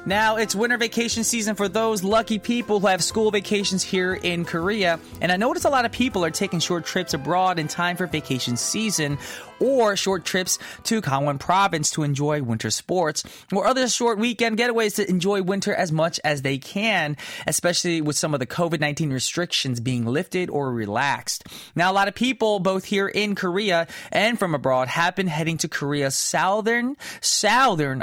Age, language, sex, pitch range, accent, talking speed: 20-39, English, male, 150-210 Hz, American, 185 wpm